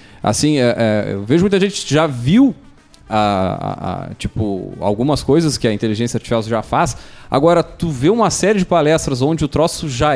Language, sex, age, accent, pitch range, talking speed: Portuguese, male, 20-39, Brazilian, 115-155 Hz, 195 wpm